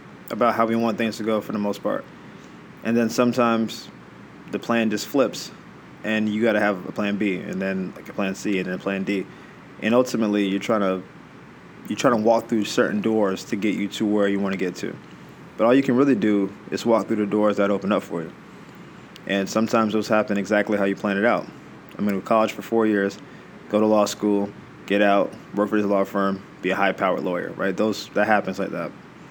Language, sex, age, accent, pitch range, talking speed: English, male, 20-39, American, 100-115 Hz, 235 wpm